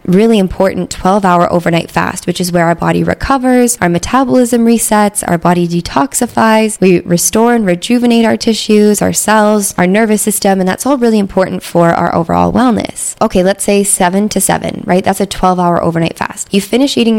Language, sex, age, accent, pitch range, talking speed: English, female, 20-39, American, 175-225 Hz, 180 wpm